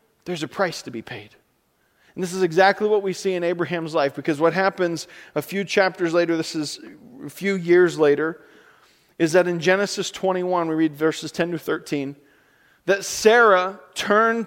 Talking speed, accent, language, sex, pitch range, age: 180 wpm, American, English, male, 155-195 Hz, 40-59